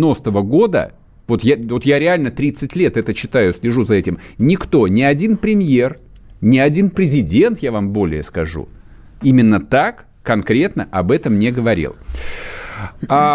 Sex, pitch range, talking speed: male, 105-160 Hz, 135 wpm